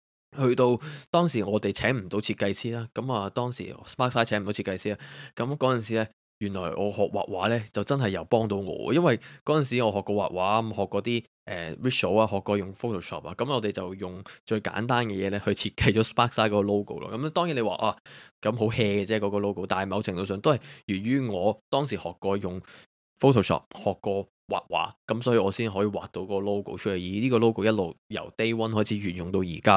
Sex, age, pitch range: male, 20-39, 95-120 Hz